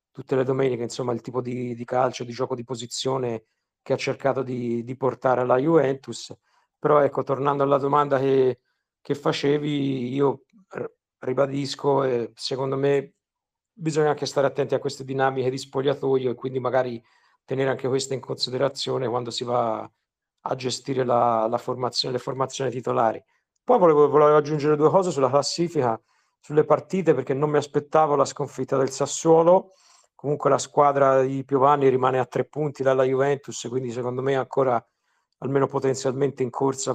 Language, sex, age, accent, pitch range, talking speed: Italian, male, 50-69, native, 130-145 Hz, 160 wpm